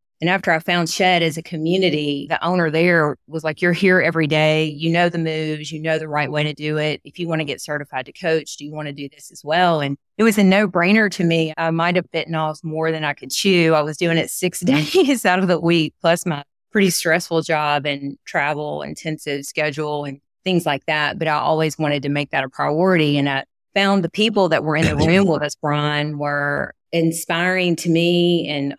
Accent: American